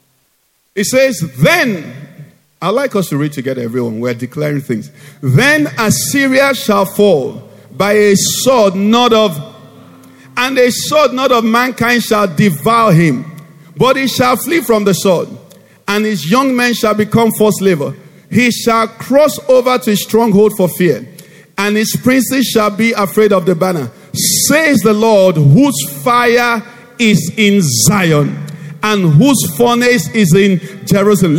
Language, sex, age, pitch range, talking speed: English, male, 50-69, 180-250 Hz, 150 wpm